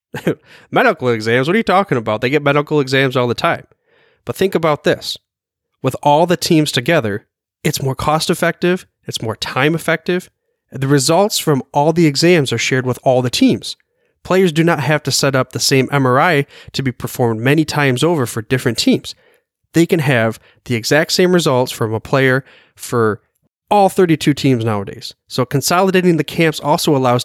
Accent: American